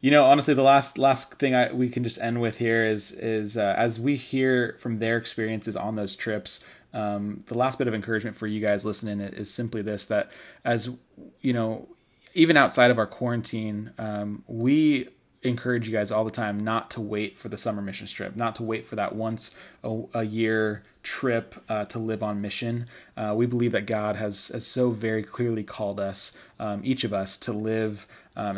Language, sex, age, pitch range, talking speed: English, male, 20-39, 105-120 Hz, 205 wpm